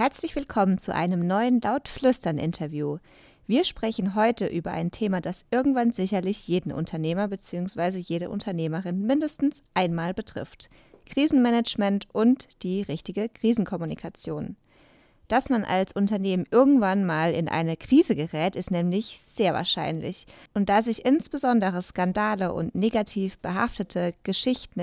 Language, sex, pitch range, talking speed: German, female, 180-235 Hz, 125 wpm